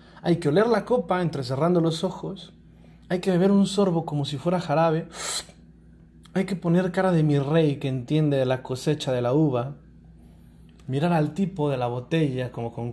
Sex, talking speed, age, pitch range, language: male, 185 wpm, 30-49, 140-195 Hz, Spanish